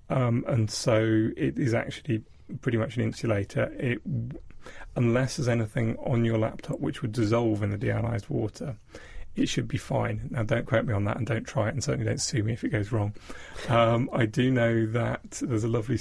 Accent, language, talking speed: British, English, 205 wpm